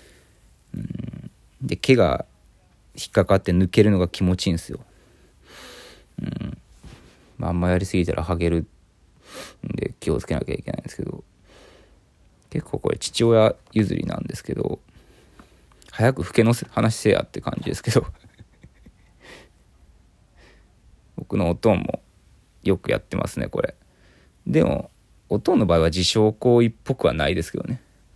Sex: male